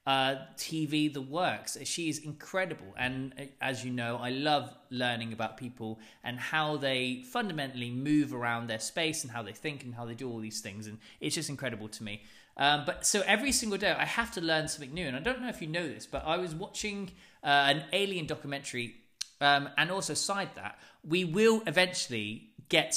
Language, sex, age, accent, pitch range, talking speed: English, male, 20-39, British, 125-180 Hz, 205 wpm